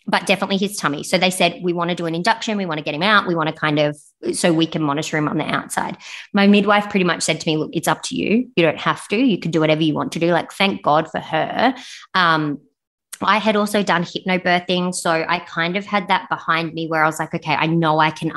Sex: female